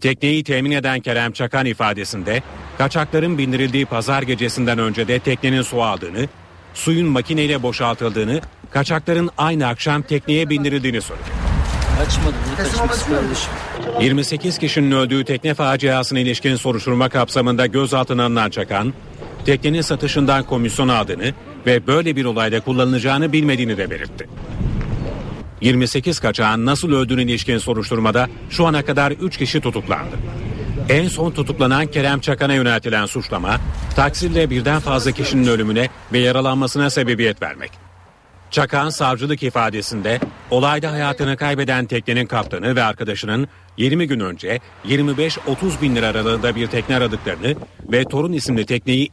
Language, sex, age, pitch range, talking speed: Turkish, male, 40-59, 120-145 Hz, 120 wpm